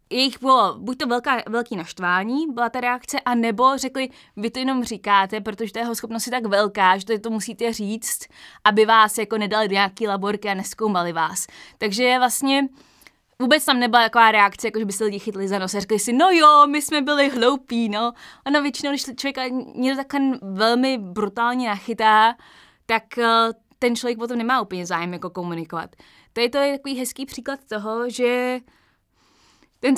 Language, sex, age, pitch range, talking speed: Slovak, female, 20-39, 215-250 Hz, 175 wpm